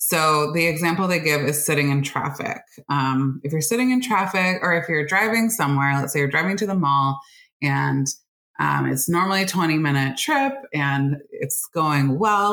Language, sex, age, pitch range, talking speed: English, female, 20-39, 140-195 Hz, 185 wpm